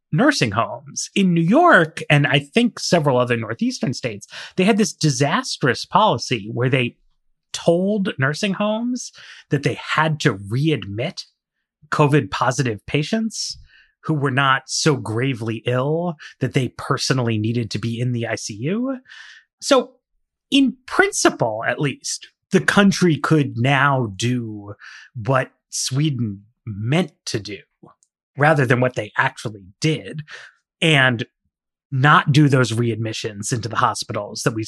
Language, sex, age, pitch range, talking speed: English, male, 30-49, 115-160 Hz, 130 wpm